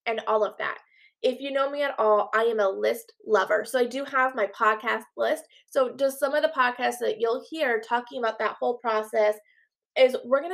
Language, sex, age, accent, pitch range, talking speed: English, female, 20-39, American, 225-290 Hz, 220 wpm